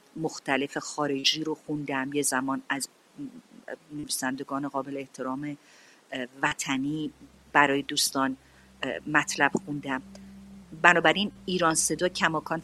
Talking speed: 90 wpm